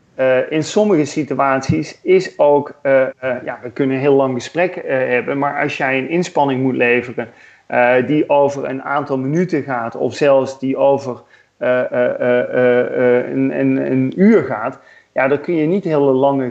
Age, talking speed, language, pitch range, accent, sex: 40-59, 135 wpm, Dutch, 130-155 Hz, Dutch, male